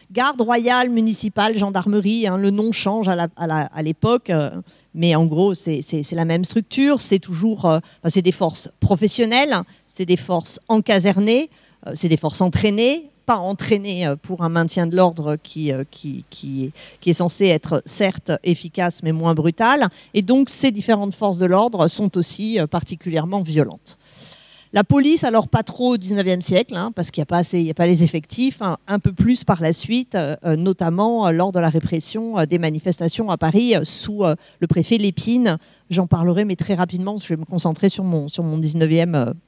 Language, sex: English, female